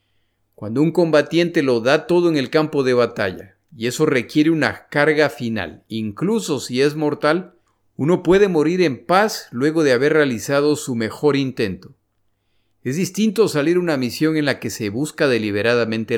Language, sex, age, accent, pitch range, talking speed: Spanish, male, 50-69, Mexican, 110-160 Hz, 165 wpm